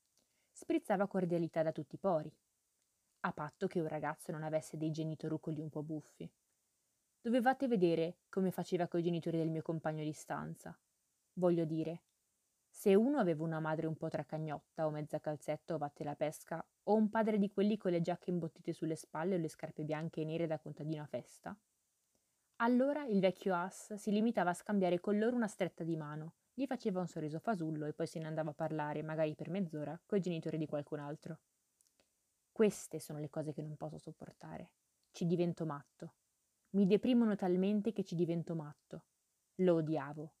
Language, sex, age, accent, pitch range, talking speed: Italian, female, 20-39, native, 155-190 Hz, 180 wpm